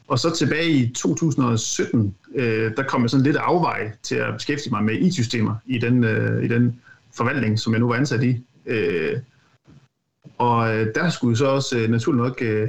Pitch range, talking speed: 115-135 Hz, 160 wpm